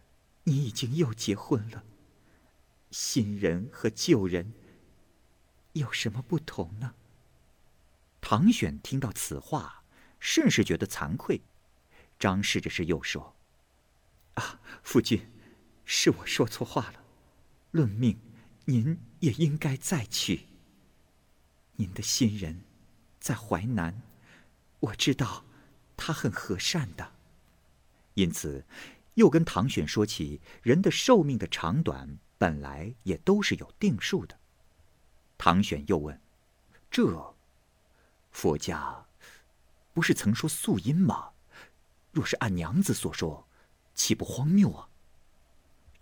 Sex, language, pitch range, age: male, Chinese, 70-115 Hz, 50-69